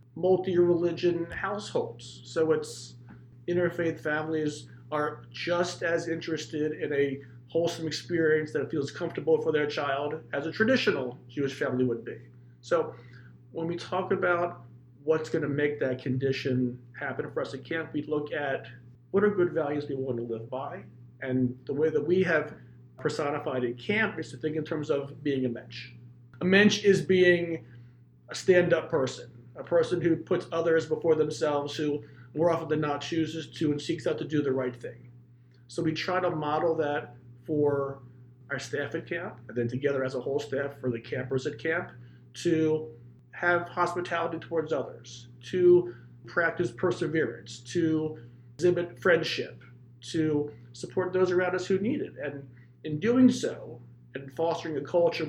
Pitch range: 125-165 Hz